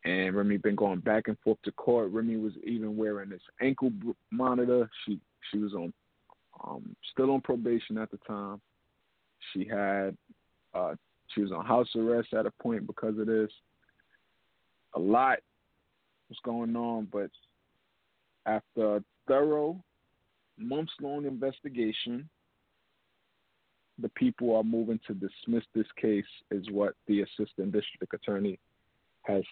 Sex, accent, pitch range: male, American, 105-125 Hz